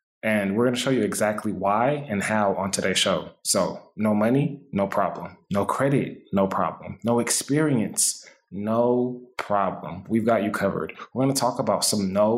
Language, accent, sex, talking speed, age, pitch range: English, American, male, 180 wpm, 20-39, 100-125 Hz